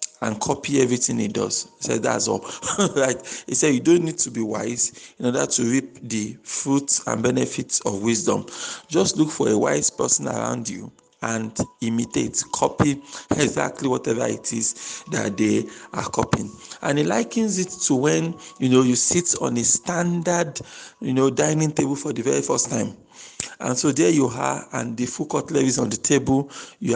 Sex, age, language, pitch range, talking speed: male, 50-69, English, 120-165 Hz, 185 wpm